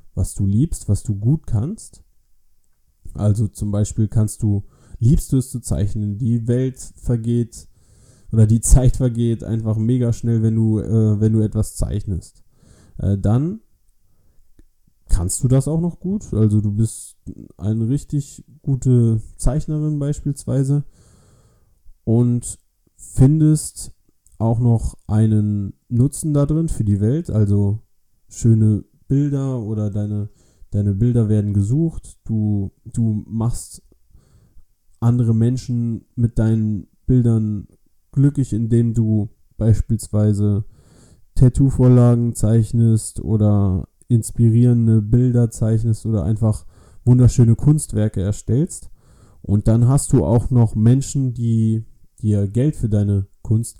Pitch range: 105-125 Hz